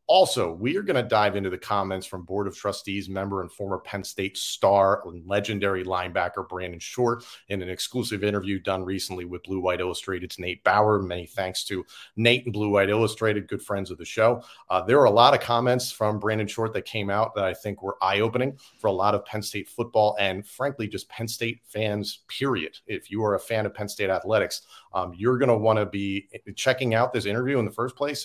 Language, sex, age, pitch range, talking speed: English, male, 40-59, 95-115 Hz, 225 wpm